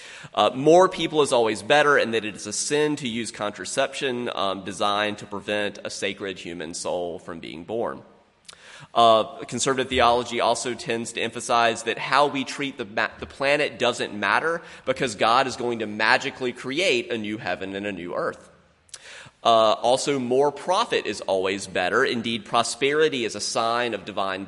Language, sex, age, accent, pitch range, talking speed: English, male, 30-49, American, 105-145 Hz, 170 wpm